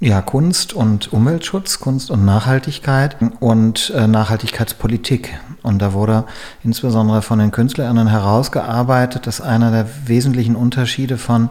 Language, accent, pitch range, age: German, German, 105-125 Hz, 40-59